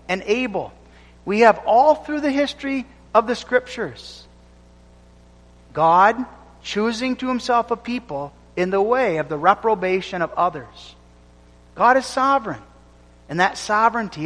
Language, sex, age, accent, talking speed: English, male, 40-59, American, 130 wpm